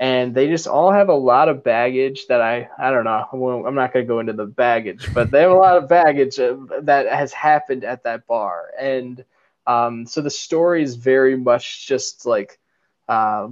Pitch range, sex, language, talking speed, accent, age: 120-140 Hz, male, English, 205 wpm, American, 20-39